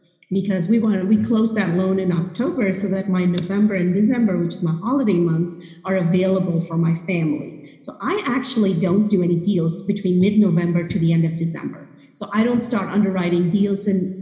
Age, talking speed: 30-49, 205 wpm